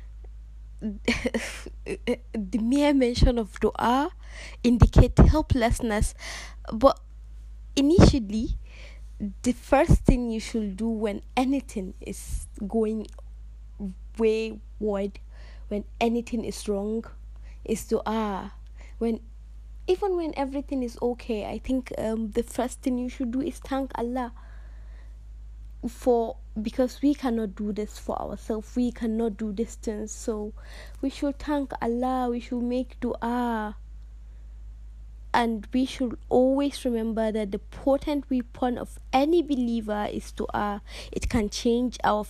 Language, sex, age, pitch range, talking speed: English, female, 20-39, 205-245 Hz, 120 wpm